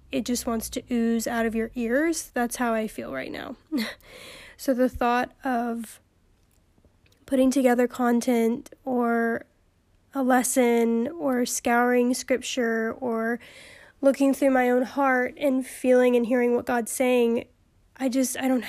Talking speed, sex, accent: 145 wpm, female, American